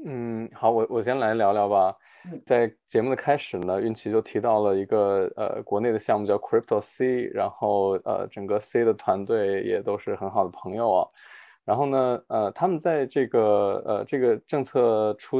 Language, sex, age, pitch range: Chinese, male, 20-39, 110-140 Hz